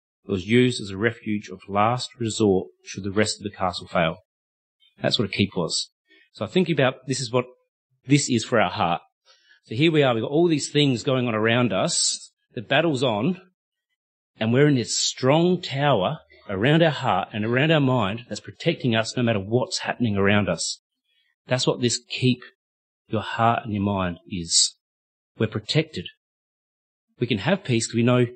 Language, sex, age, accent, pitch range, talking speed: English, male, 30-49, Australian, 100-130 Hz, 190 wpm